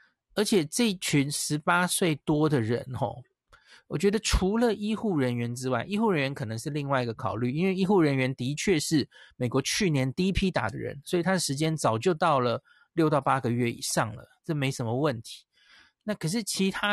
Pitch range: 130-170 Hz